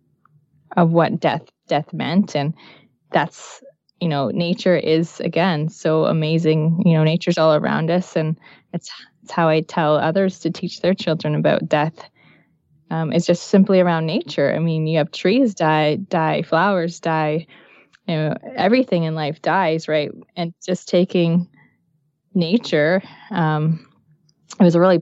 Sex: female